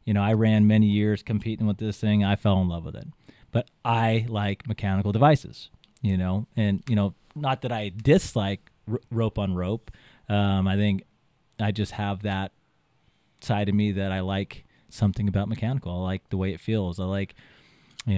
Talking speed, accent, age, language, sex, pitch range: 190 wpm, American, 30-49, English, male, 100-125 Hz